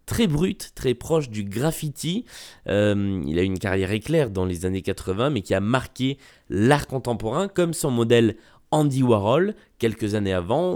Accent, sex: French, male